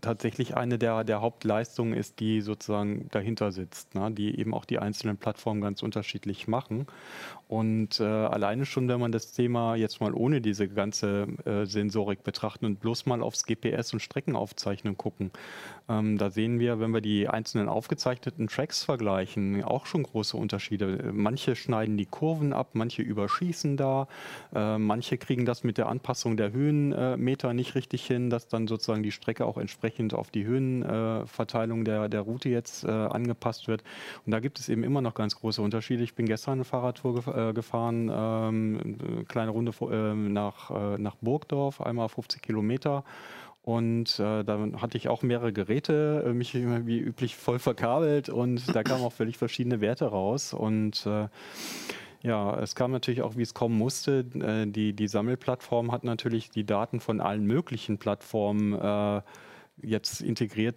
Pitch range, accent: 105-125 Hz, German